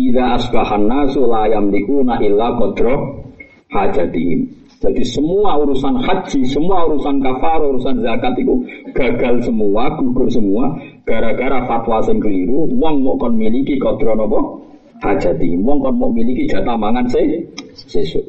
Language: Indonesian